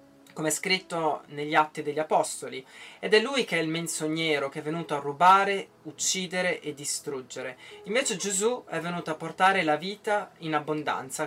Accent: native